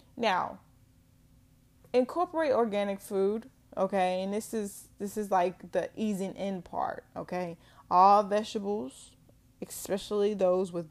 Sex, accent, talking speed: female, American, 115 wpm